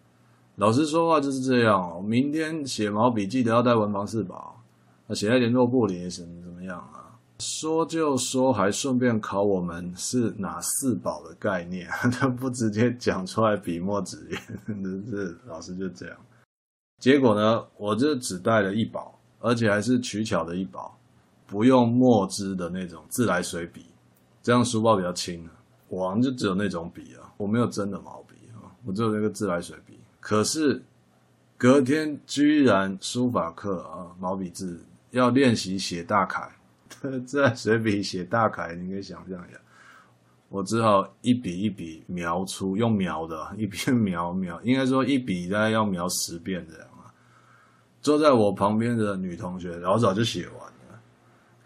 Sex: male